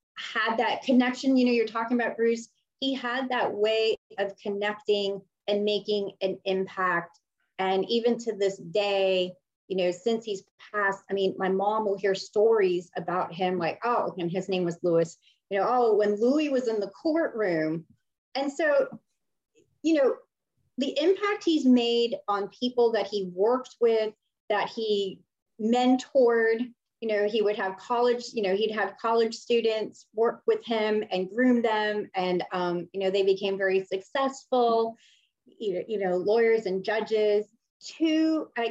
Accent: American